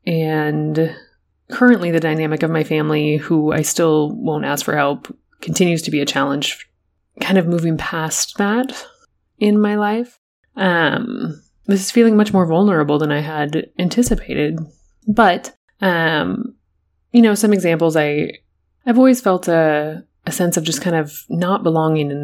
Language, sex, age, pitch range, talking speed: English, female, 20-39, 150-200 Hz, 155 wpm